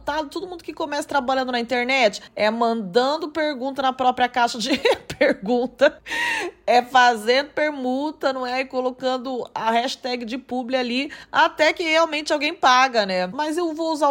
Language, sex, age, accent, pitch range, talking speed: Portuguese, female, 20-39, Brazilian, 255-320 Hz, 155 wpm